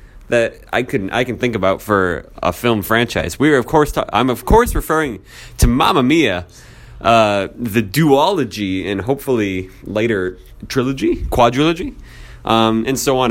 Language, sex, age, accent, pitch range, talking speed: English, male, 20-39, American, 105-150 Hz, 160 wpm